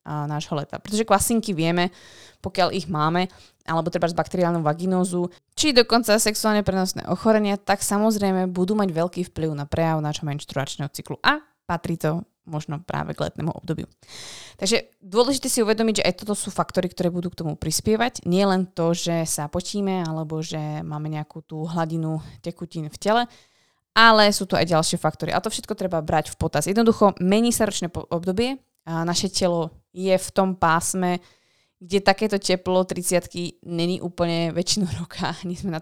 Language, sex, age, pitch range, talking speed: Slovak, female, 20-39, 160-195 Hz, 170 wpm